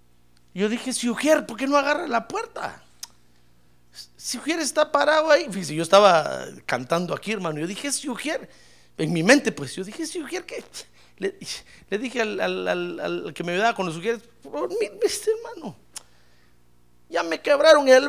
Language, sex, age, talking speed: Spanish, male, 50-69, 180 wpm